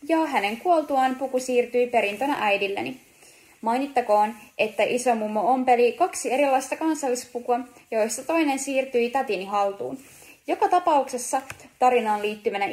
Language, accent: Finnish, native